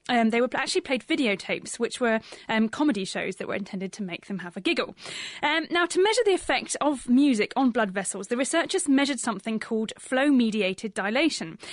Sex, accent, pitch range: female, British, 205-270 Hz